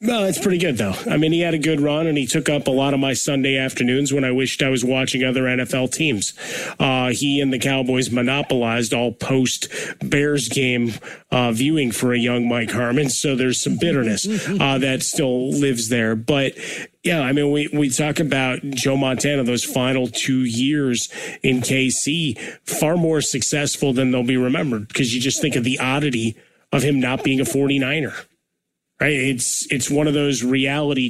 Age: 30-49